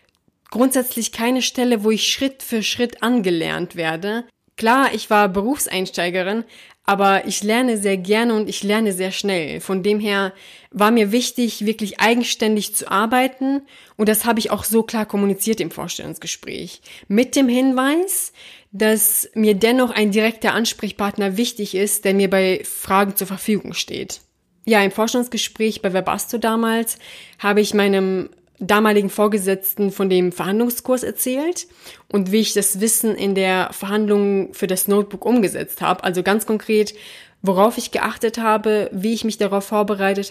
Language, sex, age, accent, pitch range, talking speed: German, female, 20-39, German, 195-230 Hz, 150 wpm